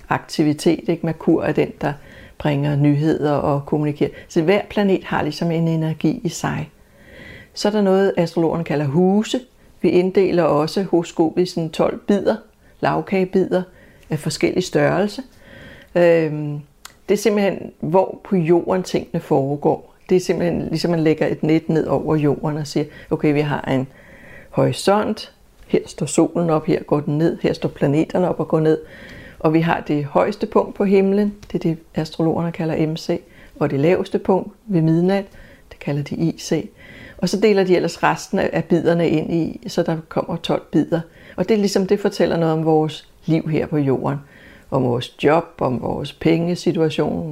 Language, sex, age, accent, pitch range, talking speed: Danish, female, 60-79, native, 155-185 Hz, 170 wpm